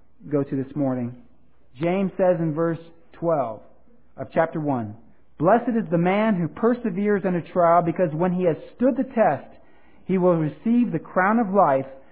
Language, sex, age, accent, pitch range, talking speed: English, male, 40-59, American, 145-195 Hz, 175 wpm